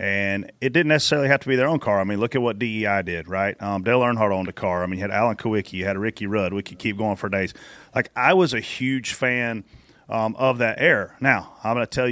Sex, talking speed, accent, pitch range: male, 270 wpm, American, 100-130 Hz